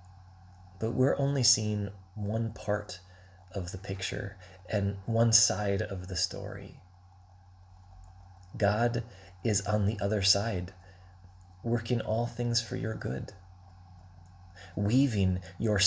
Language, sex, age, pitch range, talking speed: English, male, 30-49, 95-115 Hz, 110 wpm